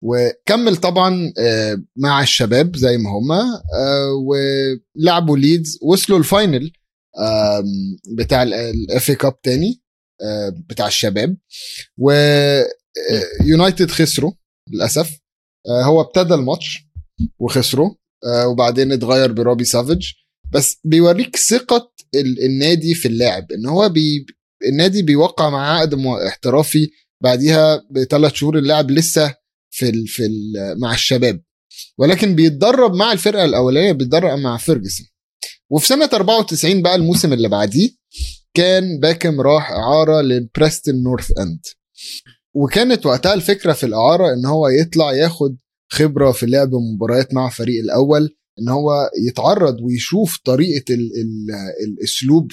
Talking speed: 115 wpm